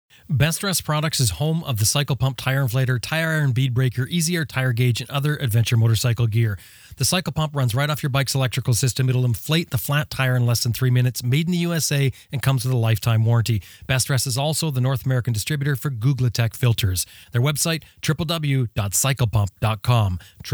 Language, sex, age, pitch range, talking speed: English, male, 30-49, 115-145 Hz, 195 wpm